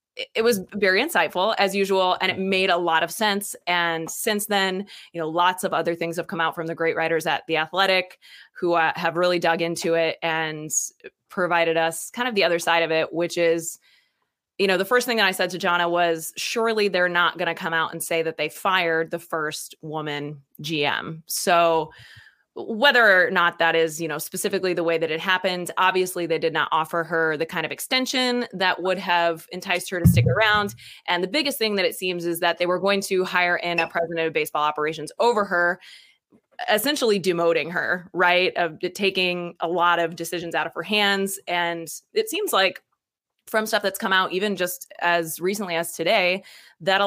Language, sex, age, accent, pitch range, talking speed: English, female, 20-39, American, 165-195 Hz, 210 wpm